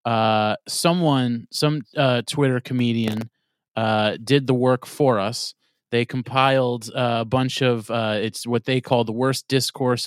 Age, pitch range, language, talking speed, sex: 30-49, 110-130 Hz, English, 155 wpm, male